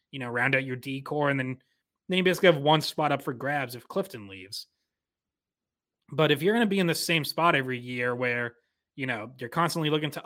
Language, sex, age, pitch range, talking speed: English, male, 20-39, 125-155 Hz, 220 wpm